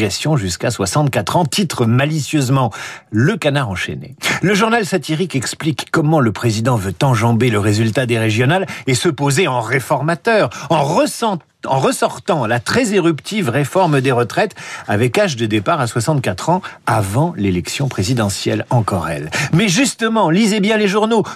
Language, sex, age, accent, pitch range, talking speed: French, male, 50-69, French, 125-190 Hz, 150 wpm